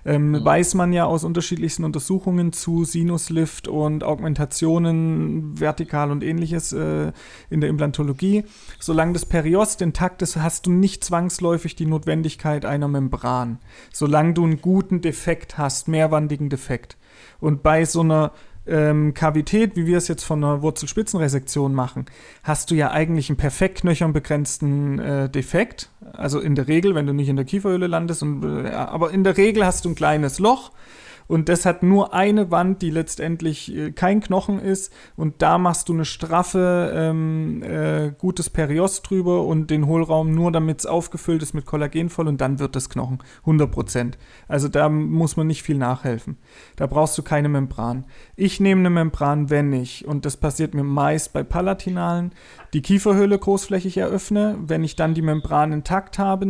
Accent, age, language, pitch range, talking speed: German, 40-59, German, 150-180 Hz, 170 wpm